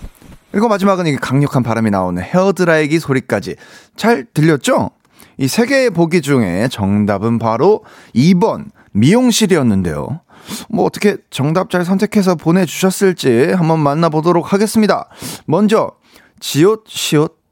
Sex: male